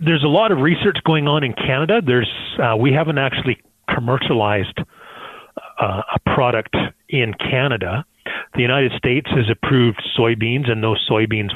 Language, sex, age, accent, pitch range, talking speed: English, male, 40-59, American, 105-125 Hz, 150 wpm